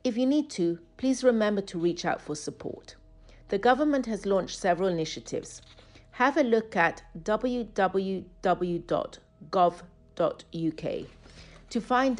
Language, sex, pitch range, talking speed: English, female, 155-210 Hz, 120 wpm